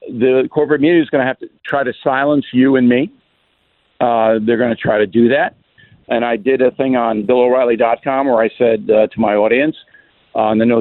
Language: English